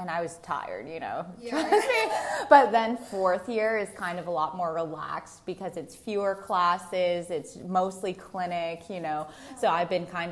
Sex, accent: female, American